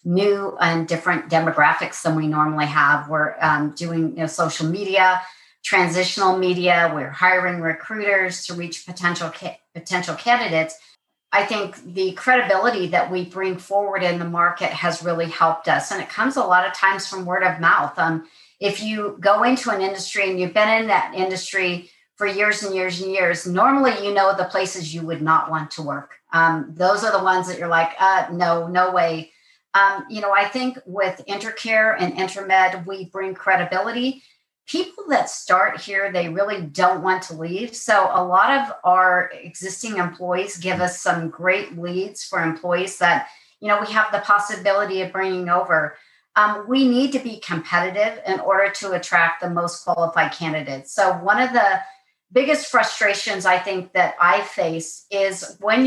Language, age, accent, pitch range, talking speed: English, 50-69, American, 175-200 Hz, 180 wpm